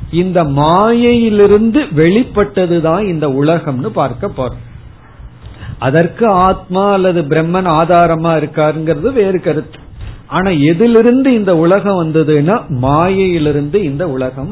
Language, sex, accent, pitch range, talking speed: Tamil, male, native, 140-195 Hz, 95 wpm